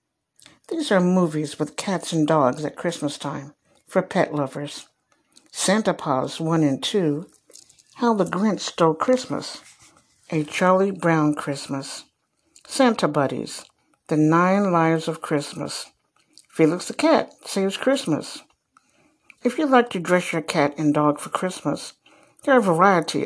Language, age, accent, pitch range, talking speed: English, 60-79, American, 150-190 Hz, 140 wpm